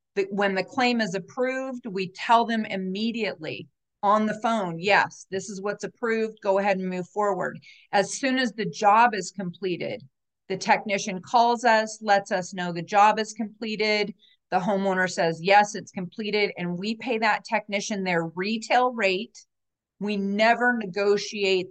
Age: 40-59